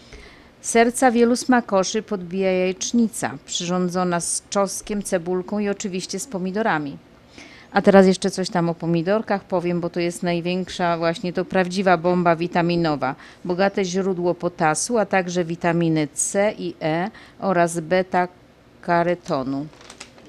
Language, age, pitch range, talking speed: Polish, 40-59, 170-200 Hz, 120 wpm